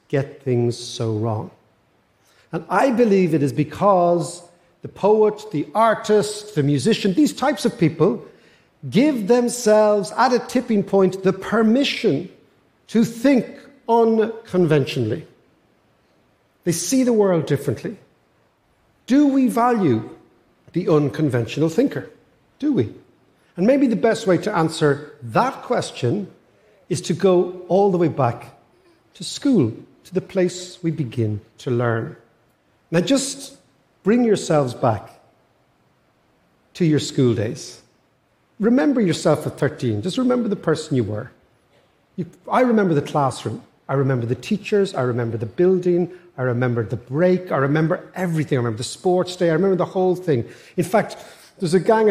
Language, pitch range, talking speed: English, 140-210 Hz, 140 wpm